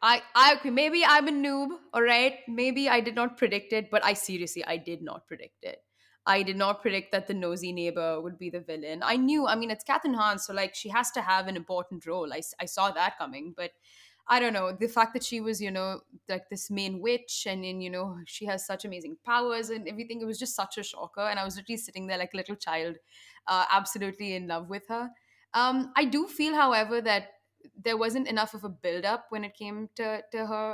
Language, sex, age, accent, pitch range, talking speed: English, female, 20-39, Indian, 190-240 Hz, 240 wpm